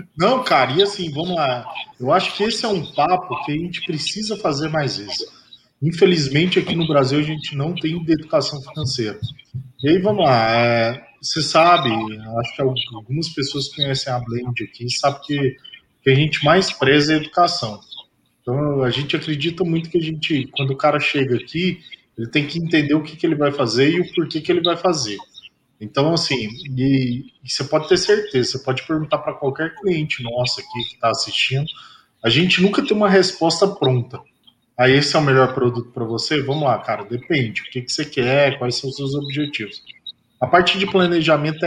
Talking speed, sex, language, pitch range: 195 wpm, male, Portuguese, 130-175 Hz